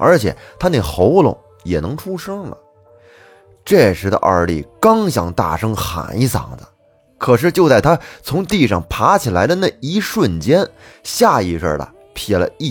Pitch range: 95-140 Hz